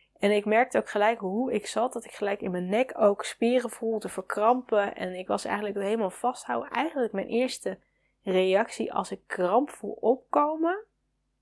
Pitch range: 195-235 Hz